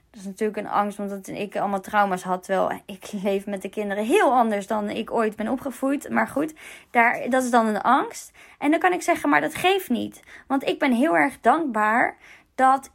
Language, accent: Dutch, Dutch